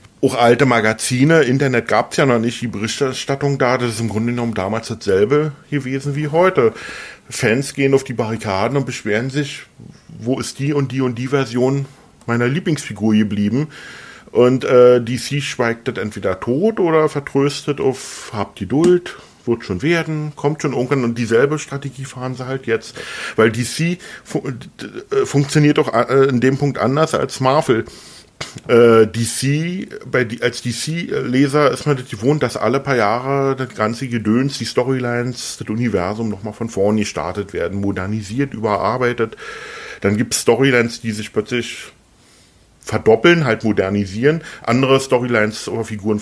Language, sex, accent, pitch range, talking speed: German, male, German, 115-145 Hz, 155 wpm